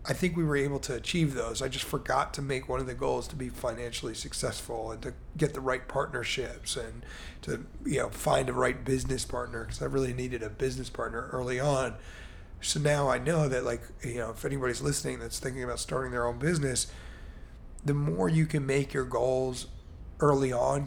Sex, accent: male, American